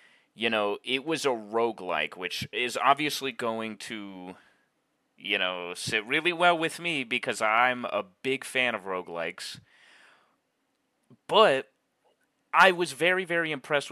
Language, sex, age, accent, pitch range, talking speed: English, male, 30-49, American, 105-145 Hz, 135 wpm